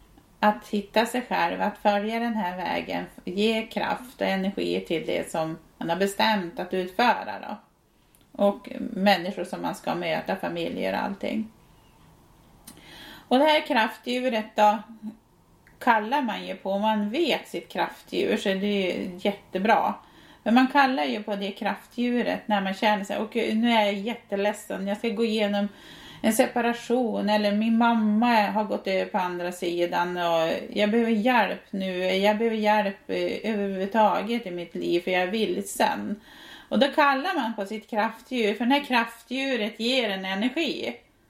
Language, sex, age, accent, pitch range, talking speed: Swedish, female, 30-49, native, 195-235 Hz, 160 wpm